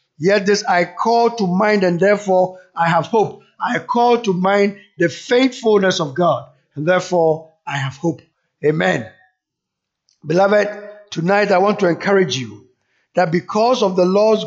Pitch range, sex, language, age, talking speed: 160-205 Hz, male, English, 50-69, 155 wpm